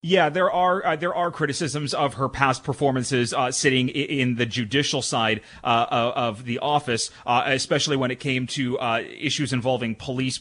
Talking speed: 190 wpm